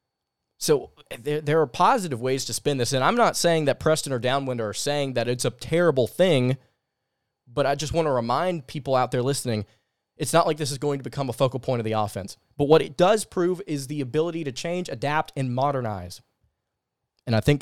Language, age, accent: English, 20-39, American